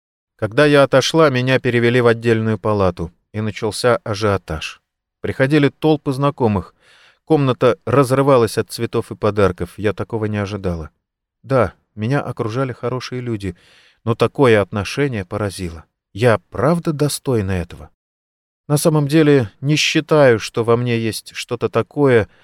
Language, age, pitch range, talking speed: Russian, 30-49, 100-130 Hz, 130 wpm